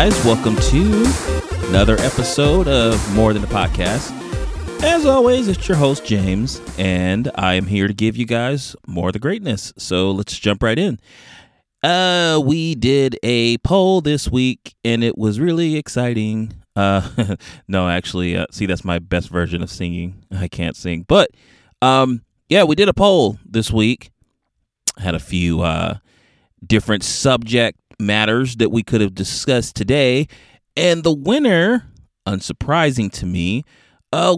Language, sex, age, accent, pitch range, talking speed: English, male, 30-49, American, 95-140 Hz, 150 wpm